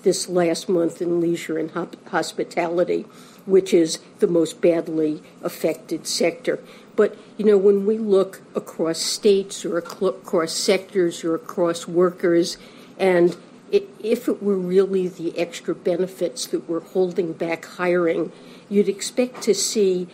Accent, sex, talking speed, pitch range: American, female, 135 wpm, 170-205 Hz